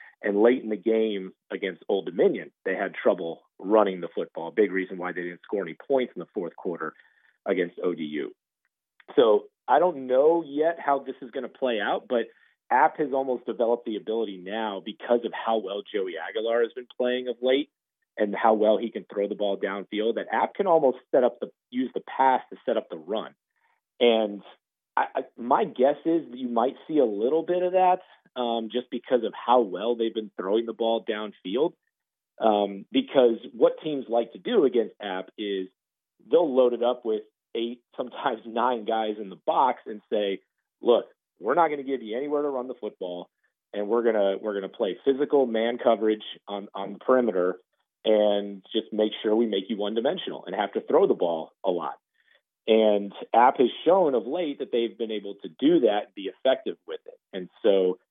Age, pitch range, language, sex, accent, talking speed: 40-59, 105-135 Hz, English, male, American, 200 wpm